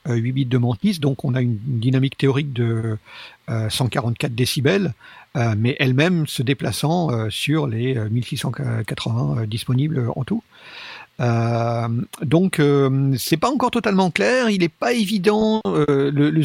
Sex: male